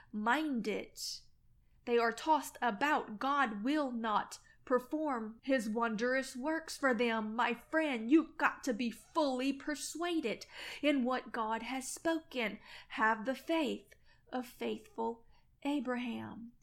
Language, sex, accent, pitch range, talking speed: English, female, American, 240-315 Hz, 125 wpm